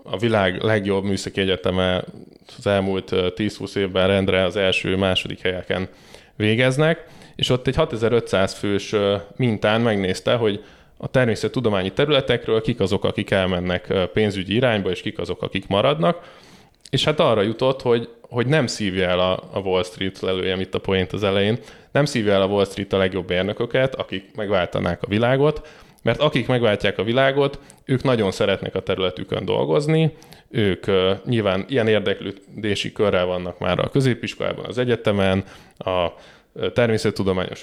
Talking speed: 145 wpm